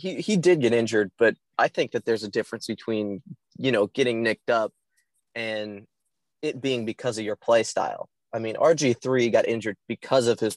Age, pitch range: 20-39, 115-150 Hz